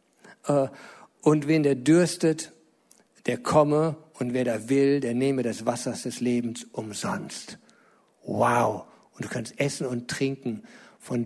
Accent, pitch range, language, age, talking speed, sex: German, 120-140 Hz, German, 50-69, 140 wpm, male